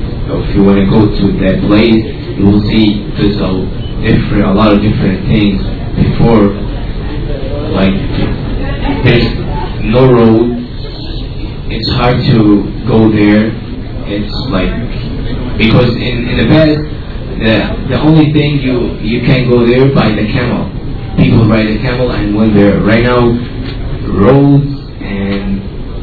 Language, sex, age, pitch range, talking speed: English, male, 30-49, 105-130 Hz, 135 wpm